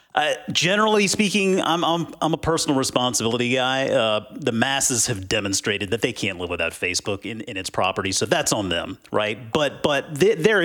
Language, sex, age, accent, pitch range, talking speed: English, male, 30-49, American, 125-165 Hz, 190 wpm